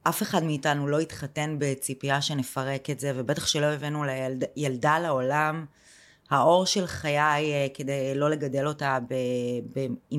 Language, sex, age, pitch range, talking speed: Hebrew, female, 20-39, 140-170 Hz, 145 wpm